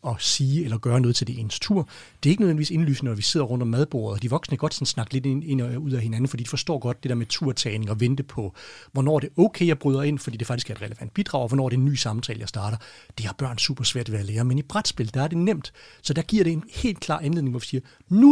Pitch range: 125-165 Hz